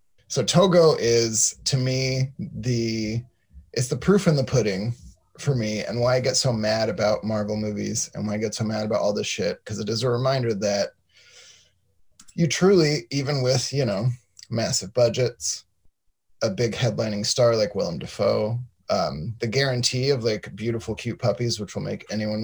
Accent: American